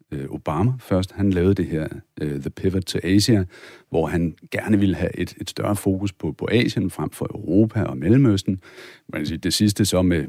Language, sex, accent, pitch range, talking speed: Danish, male, native, 85-110 Hz, 205 wpm